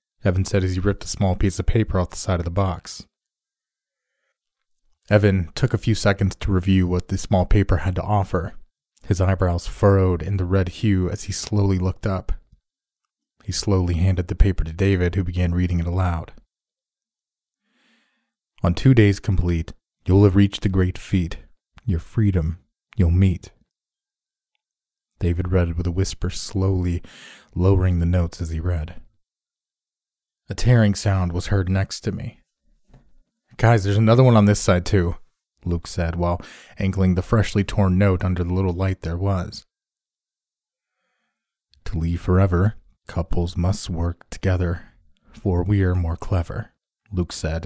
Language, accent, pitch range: English, American, 90-100 Hz